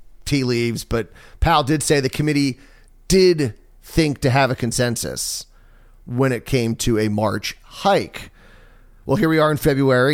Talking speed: 160 wpm